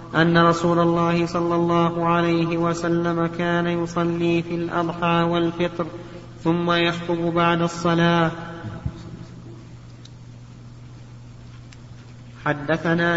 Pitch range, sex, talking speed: 170-175 Hz, male, 80 wpm